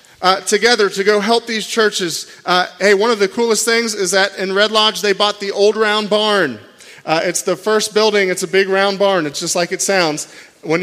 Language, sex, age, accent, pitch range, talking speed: English, male, 30-49, American, 185-220 Hz, 225 wpm